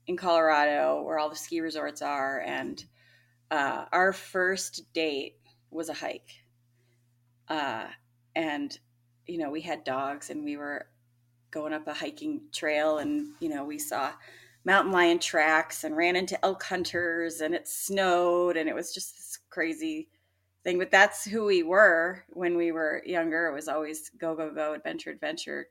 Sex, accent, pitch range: female, American, 150-210 Hz